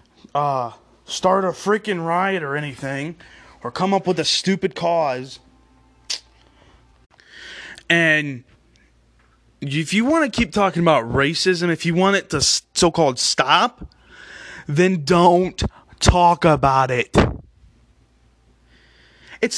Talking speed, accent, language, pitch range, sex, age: 110 wpm, American, English, 135-205 Hz, male, 20-39